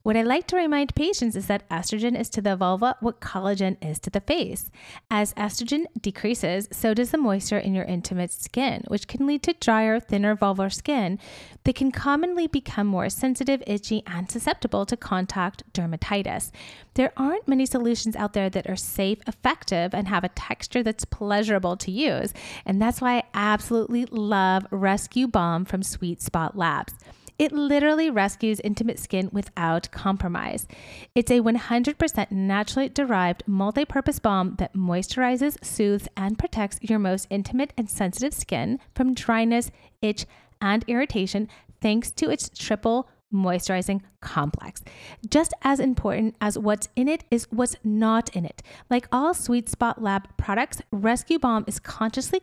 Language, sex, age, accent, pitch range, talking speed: English, female, 30-49, American, 195-250 Hz, 160 wpm